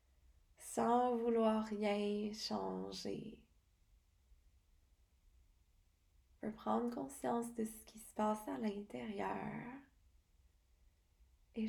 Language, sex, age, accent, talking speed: English, female, 20-39, Canadian, 80 wpm